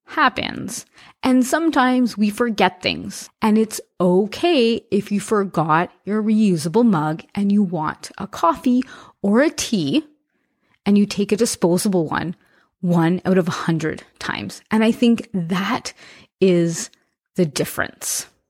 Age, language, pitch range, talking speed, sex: 30-49, English, 180-235 Hz, 135 wpm, female